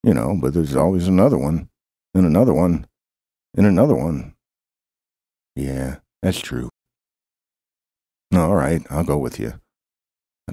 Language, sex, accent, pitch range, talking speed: English, male, American, 75-105 Hz, 130 wpm